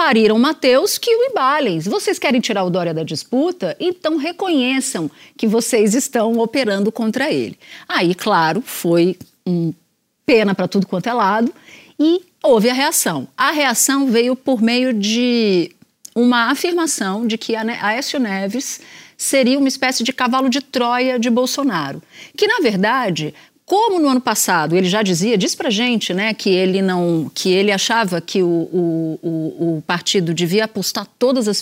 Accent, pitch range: Brazilian, 185-265 Hz